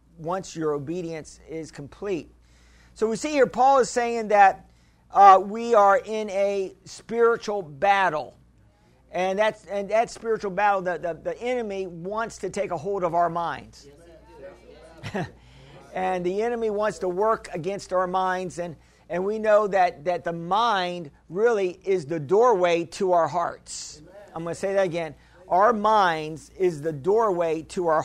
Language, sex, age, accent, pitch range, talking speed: English, male, 50-69, American, 170-210 Hz, 160 wpm